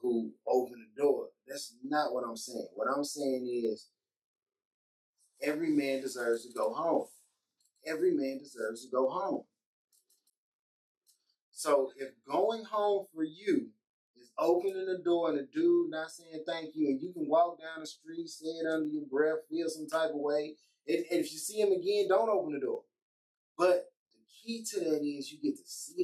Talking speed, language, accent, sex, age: 180 wpm, English, American, male, 30-49